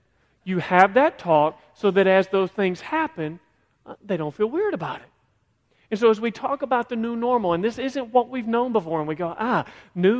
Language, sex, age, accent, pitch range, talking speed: English, male, 40-59, American, 150-215 Hz, 220 wpm